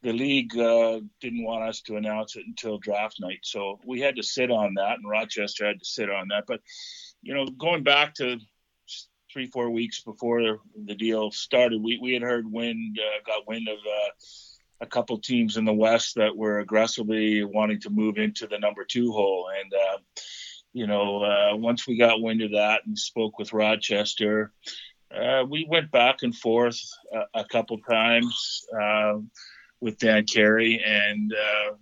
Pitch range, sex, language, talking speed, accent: 105-120 Hz, male, English, 185 wpm, American